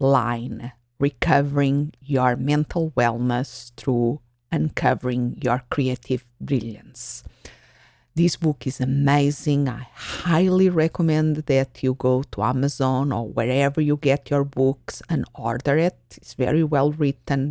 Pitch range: 130-155 Hz